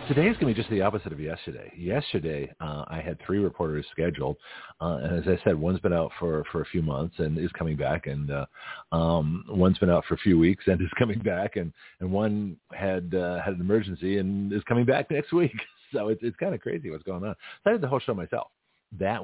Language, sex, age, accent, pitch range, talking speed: English, male, 50-69, American, 80-95 Hz, 245 wpm